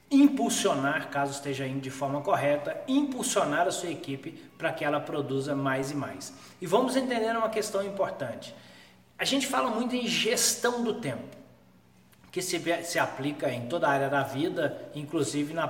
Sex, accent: male, Brazilian